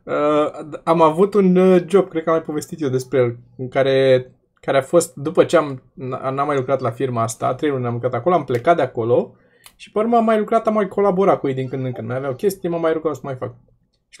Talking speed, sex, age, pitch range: 260 wpm, male, 20-39, 130-180 Hz